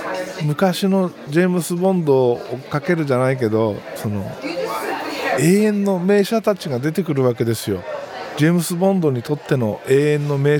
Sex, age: male, 50-69